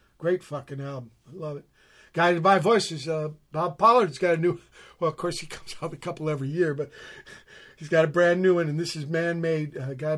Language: English